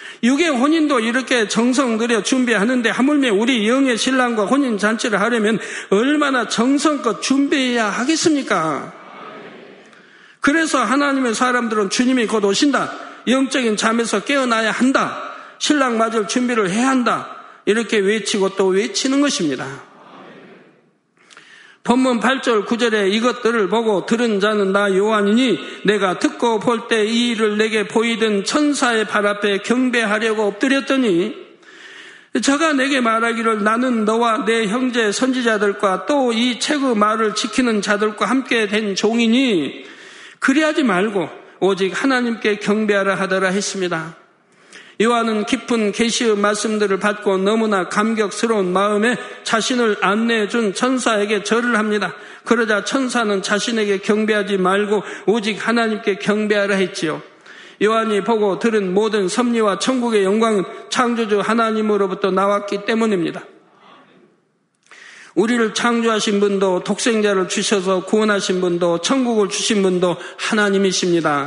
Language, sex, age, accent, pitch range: Korean, male, 50-69, native, 205-250 Hz